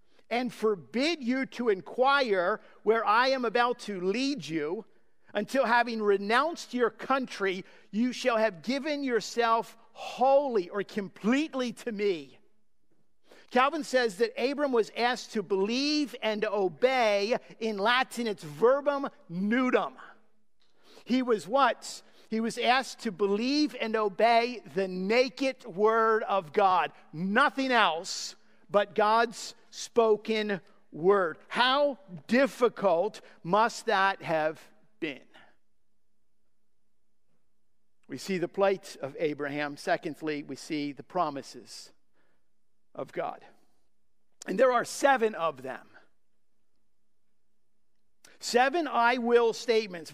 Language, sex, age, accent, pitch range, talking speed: English, male, 50-69, American, 190-245 Hz, 110 wpm